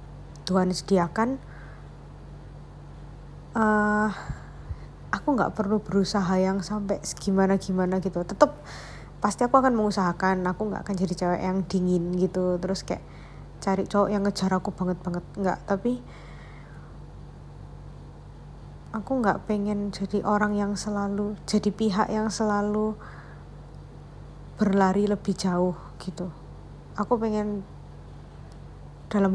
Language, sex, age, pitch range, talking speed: Indonesian, female, 20-39, 190-210 Hz, 105 wpm